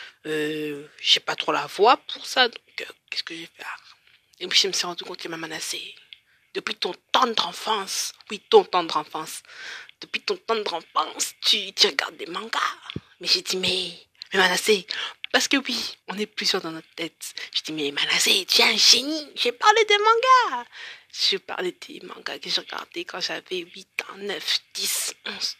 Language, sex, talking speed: French, female, 190 wpm